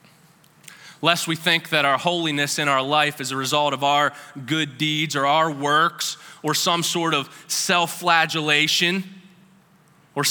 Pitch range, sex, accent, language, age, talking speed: 160-195 Hz, male, American, English, 20-39, 150 wpm